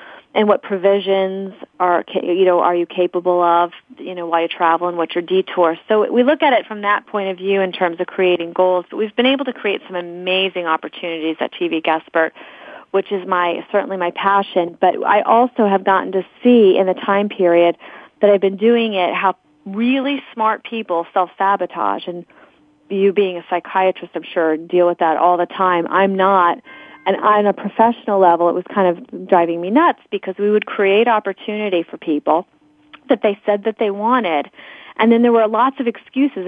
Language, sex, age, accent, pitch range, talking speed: English, female, 30-49, American, 175-220 Hz, 200 wpm